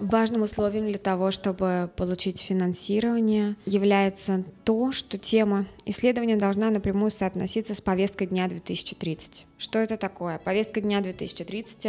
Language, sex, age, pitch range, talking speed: Russian, female, 20-39, 185-205 Hz, 125 wpm